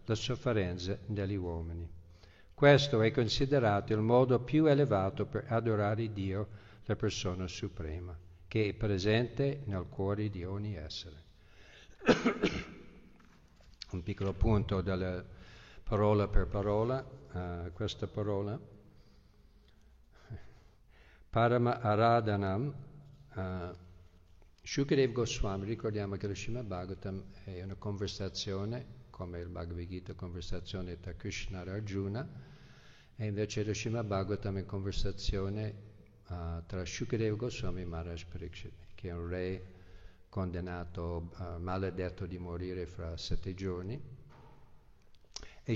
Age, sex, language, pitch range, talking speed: 50-69, male, Italian, 90-105 Hz, 105 wpm